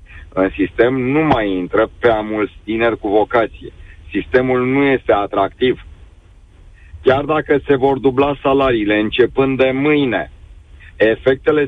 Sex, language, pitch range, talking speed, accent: male, Romanian, 105-145 Hz, 125 wpm, native